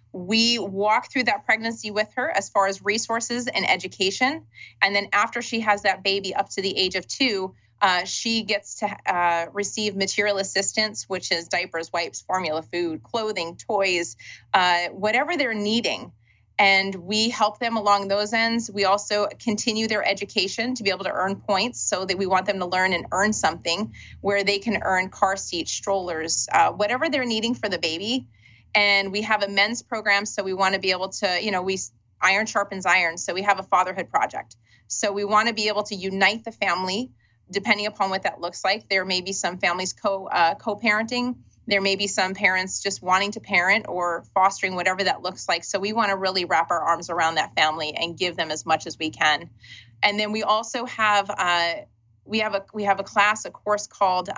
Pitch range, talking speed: 180-210 Hz, 205 wpm